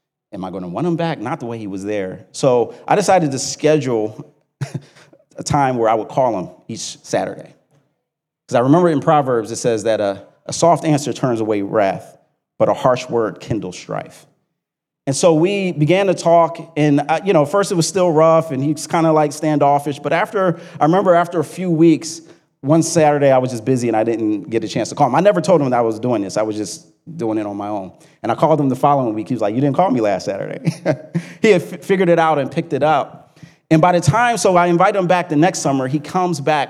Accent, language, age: American, English, 30-49